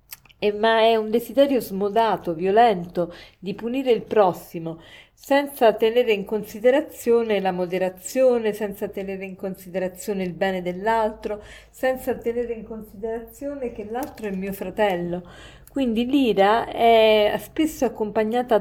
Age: 40-59